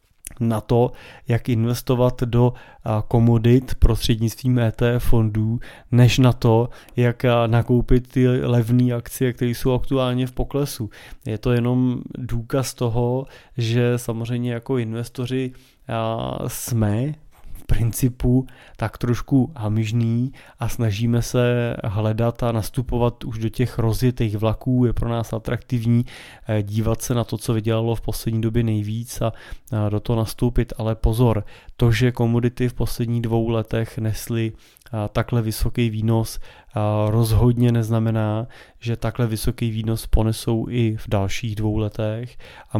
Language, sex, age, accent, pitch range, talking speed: Czech, male, 20-39, native, 110-120 Hz, 130 wpm